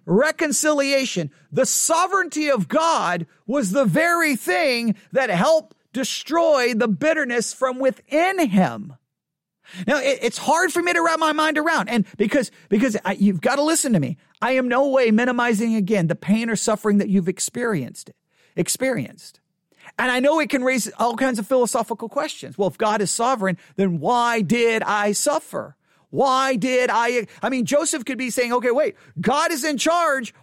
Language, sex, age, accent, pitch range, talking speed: English, male, 40-59, American, 200-285 Hz, 175 wpm